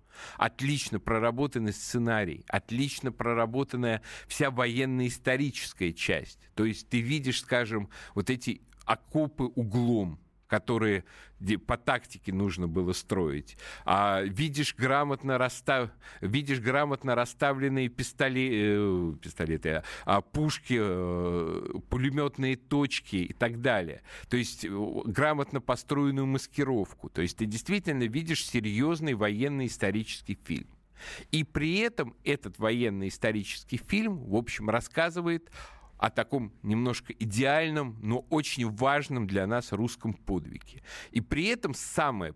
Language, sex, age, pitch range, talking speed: Russian, male, 50-69, 105-140 Hz, 110 wpm